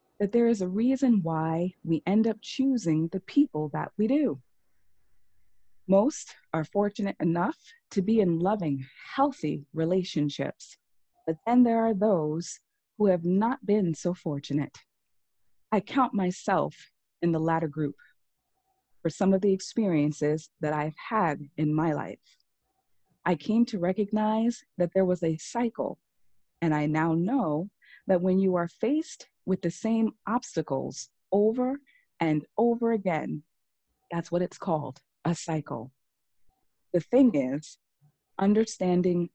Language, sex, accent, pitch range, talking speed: English, female, American, 155-215 Hz, 135 wpm